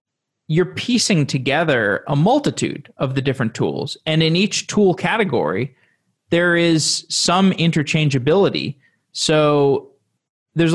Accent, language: American, English